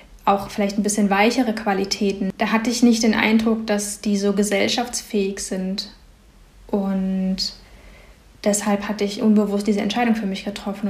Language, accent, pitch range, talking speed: German, German, 195-215 Hz, 150 wpm